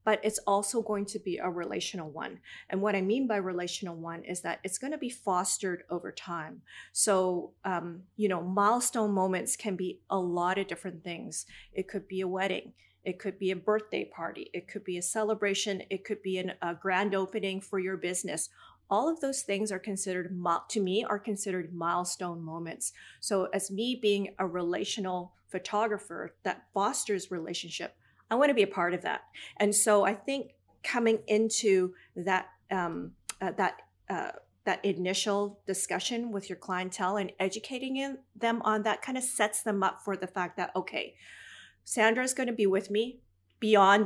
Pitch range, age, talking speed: 180-215 Hz, 40-59, 180 wpm